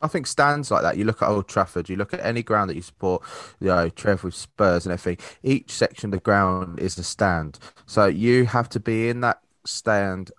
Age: 20-39